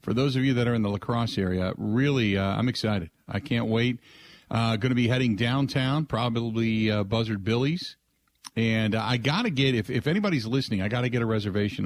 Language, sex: English, male